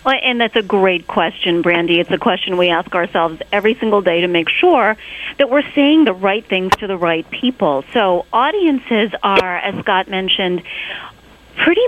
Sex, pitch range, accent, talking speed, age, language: female, 170-220 Hz, American, 180 wpm, 30-49, English